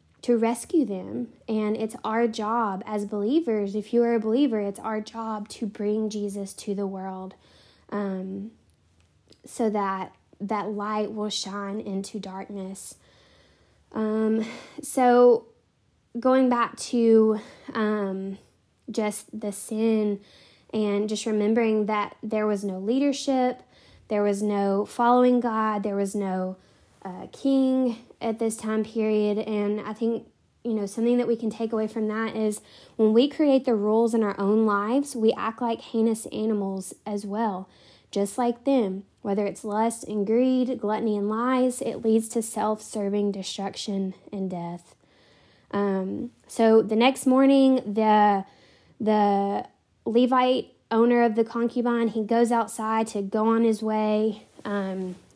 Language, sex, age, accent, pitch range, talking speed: English, female, 10-29, American, 205-235 Hz, 145 wpm